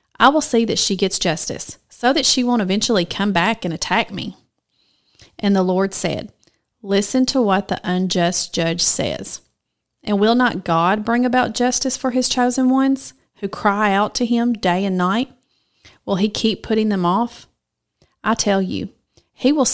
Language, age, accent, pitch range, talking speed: English, 30-49, American, 180-230 Hz, 175 wpm